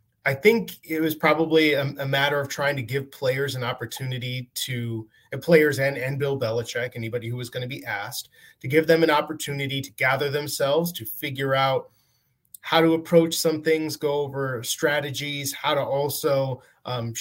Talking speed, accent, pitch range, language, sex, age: 180 wpm, American, 130-160 Hz, English, male, 20-39